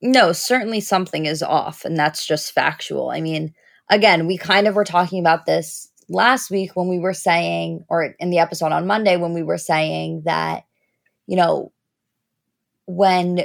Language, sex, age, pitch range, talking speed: English, female, 20-39, 170-205 Hz, 175 wpm